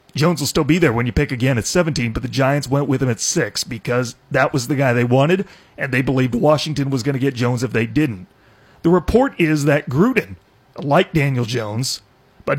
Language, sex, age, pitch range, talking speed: English, male, 40-59, 130-160 Hz, 225 wpm